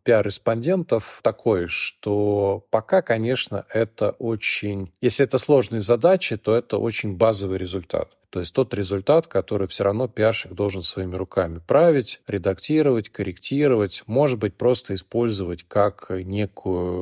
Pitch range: 95-120 Hz